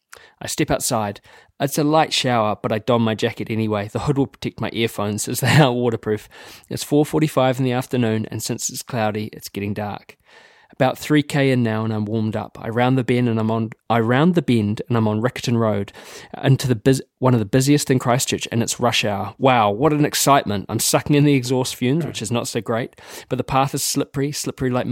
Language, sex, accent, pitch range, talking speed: English, male, Australian, 115-135 Hz, 225 wpm